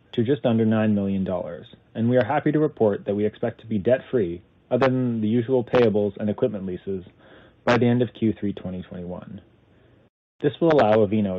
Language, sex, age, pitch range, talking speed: English, male, 30-49, 100-120 Hz, 185 wpm